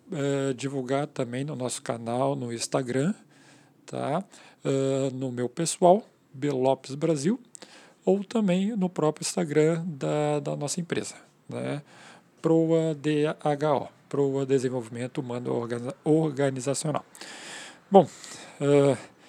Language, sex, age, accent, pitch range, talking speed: Portuguese, male, 40-59, Brazilian, 125-150 Hz, 105 wpm